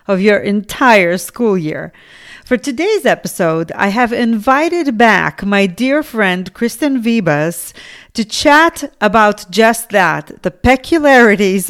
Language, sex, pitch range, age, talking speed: English, female, 195-260 Hz, 40-59, 125 wpm